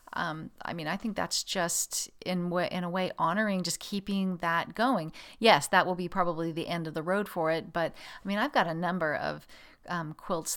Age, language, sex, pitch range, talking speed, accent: 40-59, English, female, 170-225 Hz, 225 wpm, American